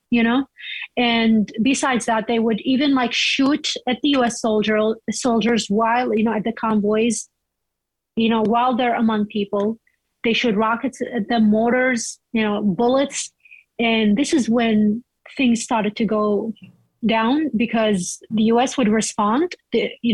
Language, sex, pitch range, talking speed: English, female, 215-250 Hz, 150 wpm